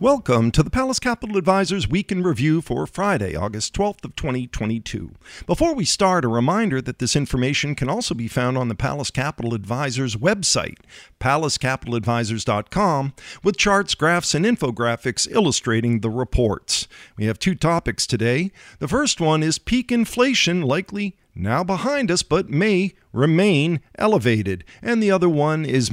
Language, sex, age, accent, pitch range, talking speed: English, male, 50-69, American, 120-185 Hz, 155 wpm